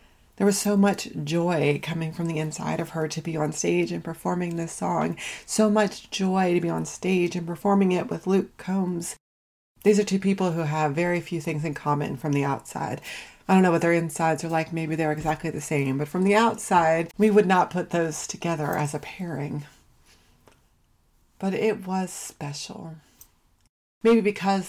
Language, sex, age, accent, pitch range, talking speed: English, female, 30-49, American, 155-190 Hz, 190 wpm